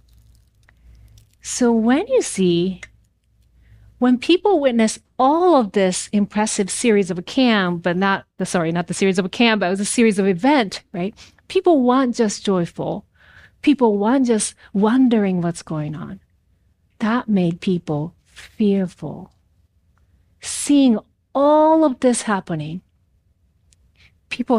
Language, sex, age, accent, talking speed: English, female, 40-59, American, 130 wpm